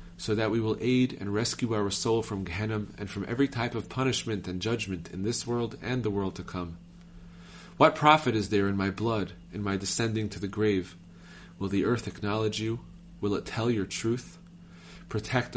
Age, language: 30-49, English